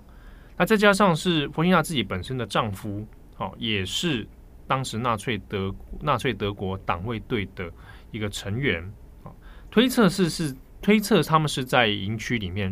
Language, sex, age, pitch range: Chinese, male, 20-39, 95-130 Hz